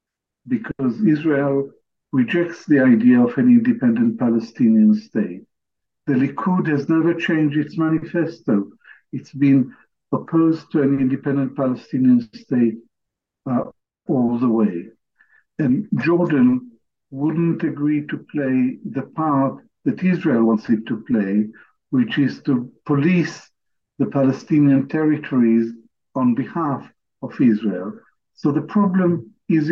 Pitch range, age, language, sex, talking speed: 135-175 Hz, 50-69, English, male, 115 wpm